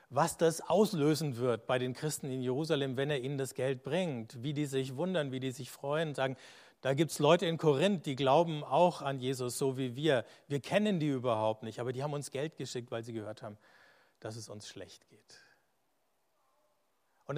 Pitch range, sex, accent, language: 120-145 Hz, male, German, German